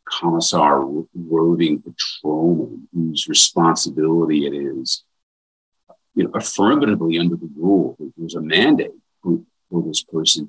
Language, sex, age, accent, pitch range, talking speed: English, male, 50-69, American, 80-90 Hz, 115 wpm